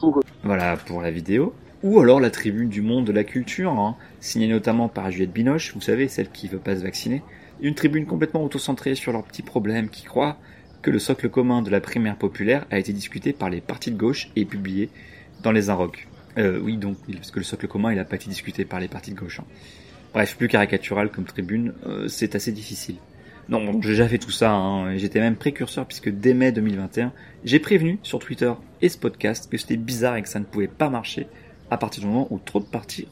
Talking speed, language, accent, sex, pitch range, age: 225 wpm, French, French, male, 100-130 Hz, 30-49